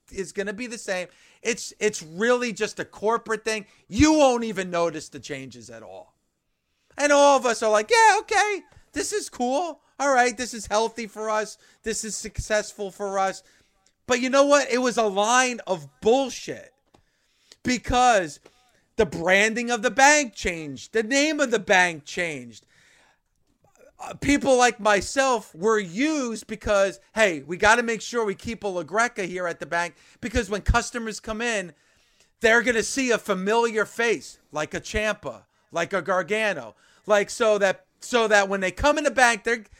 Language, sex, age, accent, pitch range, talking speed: English, male, 40-59, American, 190-245 Hz, 180 wpm